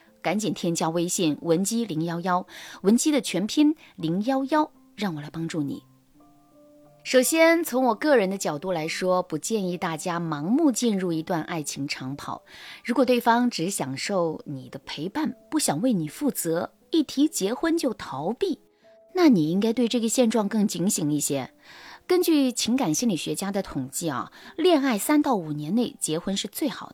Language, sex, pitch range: Chinese, female, 165-270 Hz